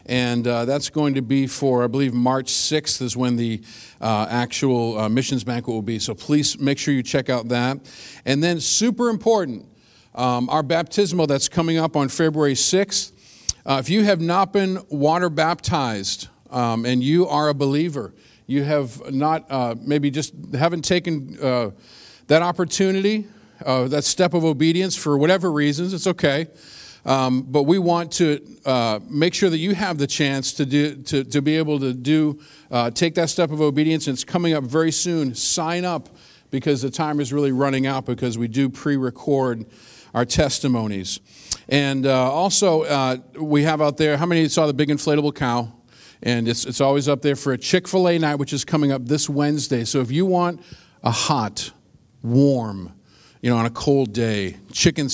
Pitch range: 125-160 Hz